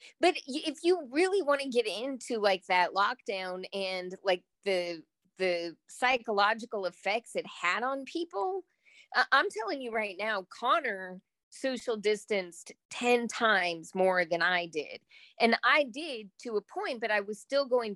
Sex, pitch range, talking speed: female, 185-235 Hz, 155 wpm